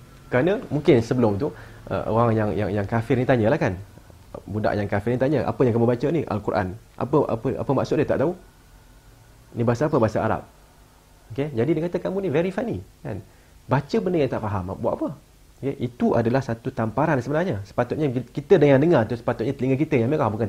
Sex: male